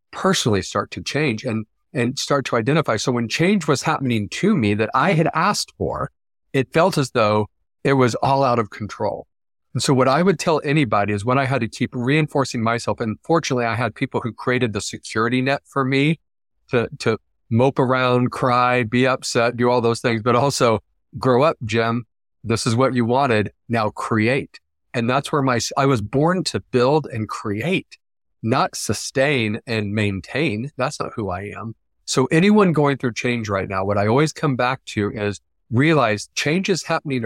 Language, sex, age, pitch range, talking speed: English, male, 40-59, 110-140 Hz, 190 wpm